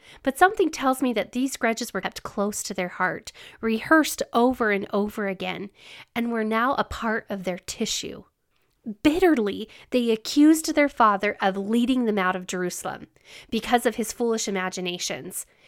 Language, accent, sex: English, American, female